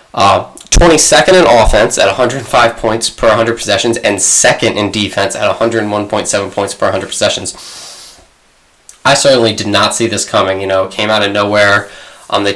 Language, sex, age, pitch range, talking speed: English, male, 10-29, 100-120 Hz, 170 wpm